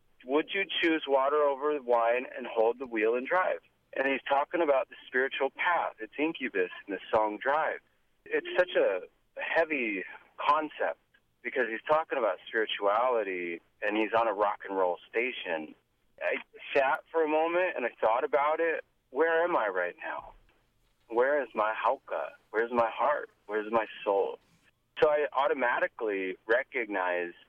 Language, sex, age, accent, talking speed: English, male, 30-49, American, 160 wpm